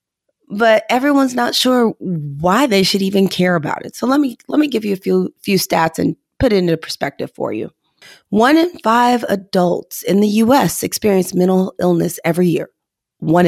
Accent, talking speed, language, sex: American, 185 wpm, English, female